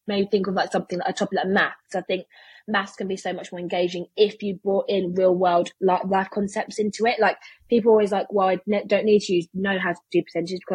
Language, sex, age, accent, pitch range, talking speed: English, female, 20-39, British, 180-220 Hz, 270 wpm